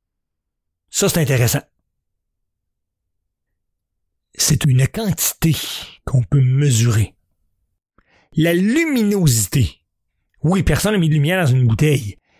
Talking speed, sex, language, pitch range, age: 95 wpm, male, French, 105-175 Hz, 60-79